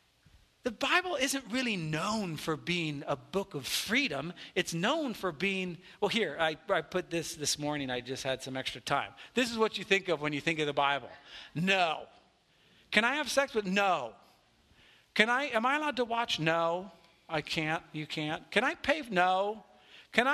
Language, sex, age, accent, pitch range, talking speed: English, male, 40-59, American, 165-245 Hz, 190 wpm